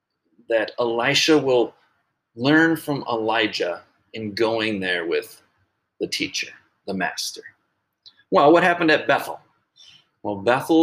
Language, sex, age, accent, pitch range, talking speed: English, male, 30-49, American, 105-155 Hz, 115 wpm